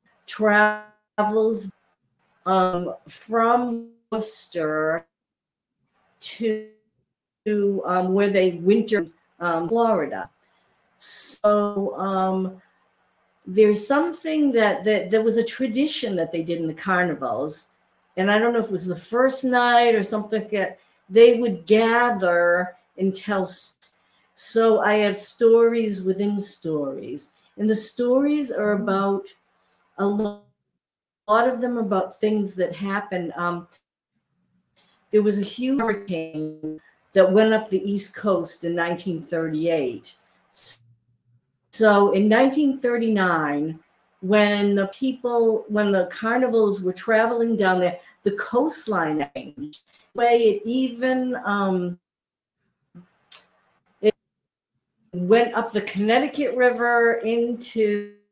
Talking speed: 110 wpm